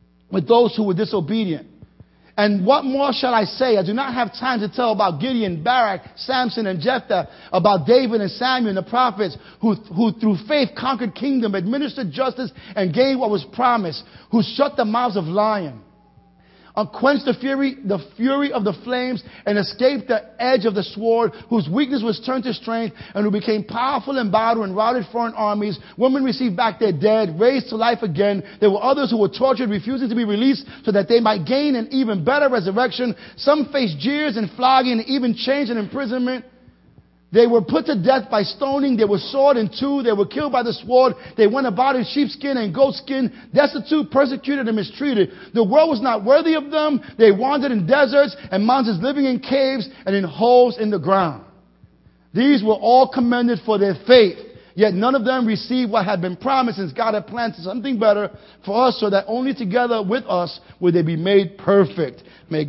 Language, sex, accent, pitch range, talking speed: English, male, American, 200-260 Hz, 195 wpm